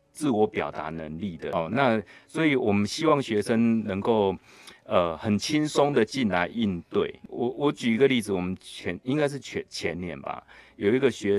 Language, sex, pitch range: Chinese, male, 90-120 Hz